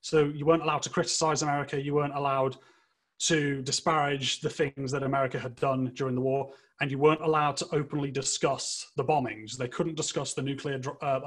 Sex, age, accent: male, 30-49, British